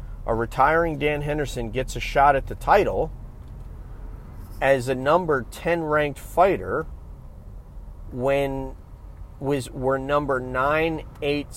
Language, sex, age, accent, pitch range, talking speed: English, male, 40-59, American, 115-145 Hz, 115 wpm